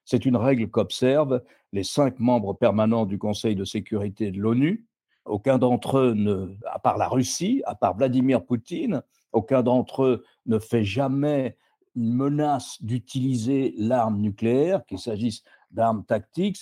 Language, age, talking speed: French, 60-79, 150 wpm